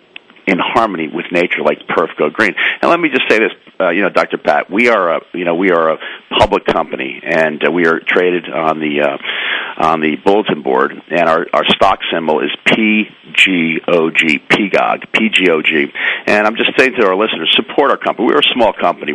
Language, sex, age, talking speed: English, male, 50-69, 205 wpm